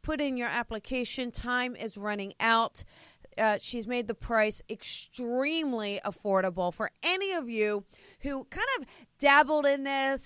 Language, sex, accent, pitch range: English, female, American, 200-240 Hz